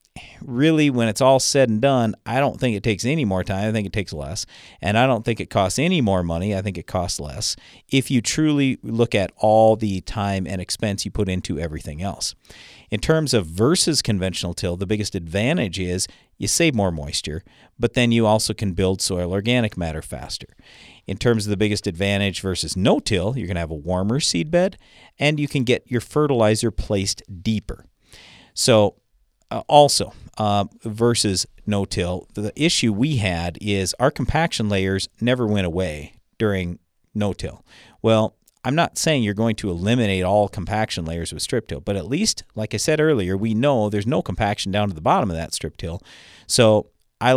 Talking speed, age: 190 wpm, 50-69